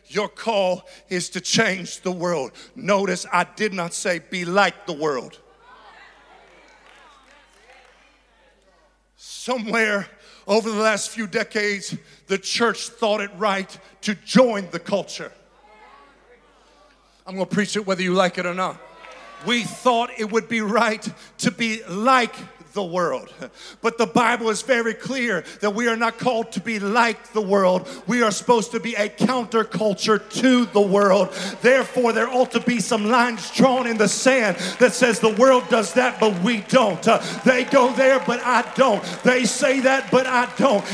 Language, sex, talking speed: English, male, 165 wpm